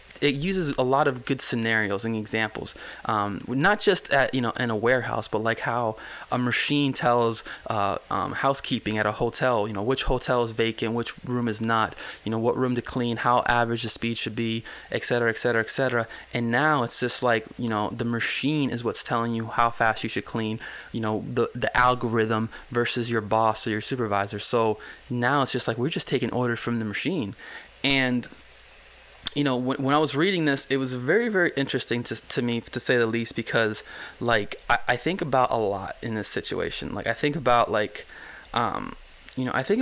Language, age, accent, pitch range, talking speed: English, 20-39, American, 115-135 Hz, 210 wpm